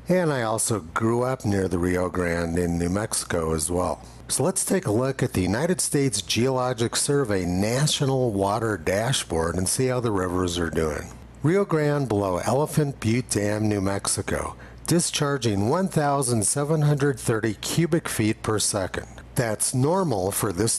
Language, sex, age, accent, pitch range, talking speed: English, male, 50-69, American, 90-140 Hz, 155 wpm